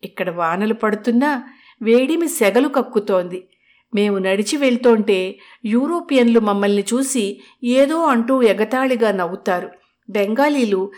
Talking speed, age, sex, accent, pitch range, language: 95 wpm, 50-69, female, native, 190-255 Hz, Telugu